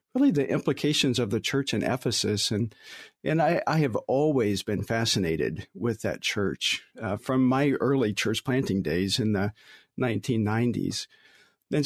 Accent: American